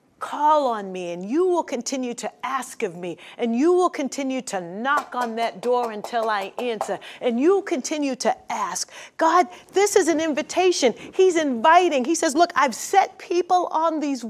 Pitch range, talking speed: 225-285 Hz, 180 wpm